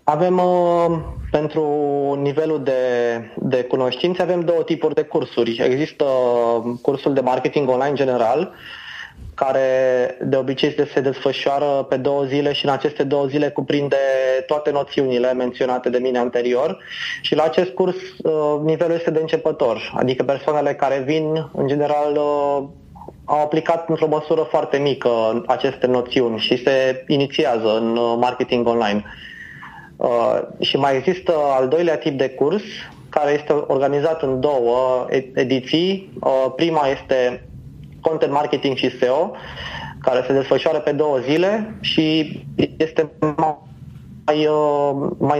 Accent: native